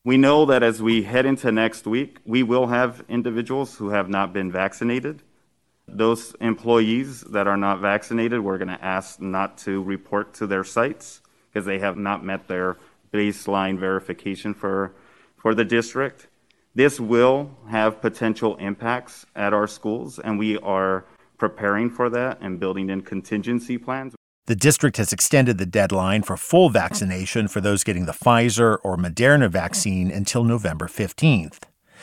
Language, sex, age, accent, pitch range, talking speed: English, male, 40-59, American, 95-130 Hz, 160 wpm